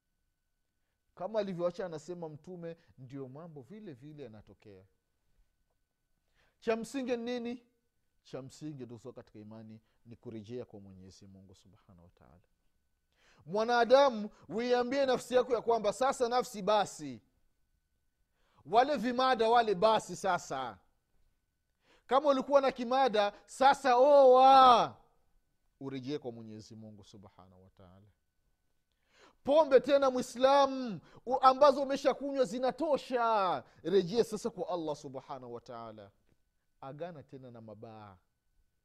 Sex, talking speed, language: male, 110 wpm, Swahili